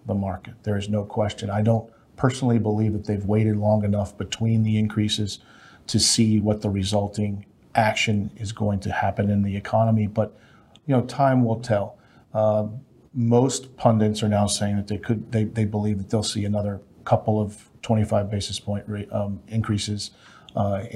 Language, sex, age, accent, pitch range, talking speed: English, male, 40-59, American, 105-115 Hz, 180 wpm